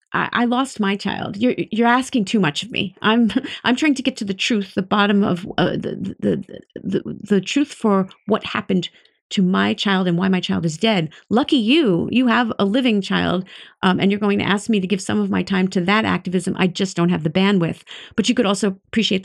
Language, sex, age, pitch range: English, female, 40-59, 180-220 Hz